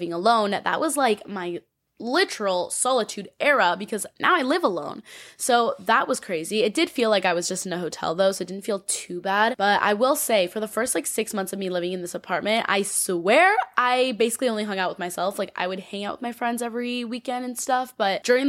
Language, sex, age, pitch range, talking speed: English, female, 10-29, 195-250 Hz, 240 wpm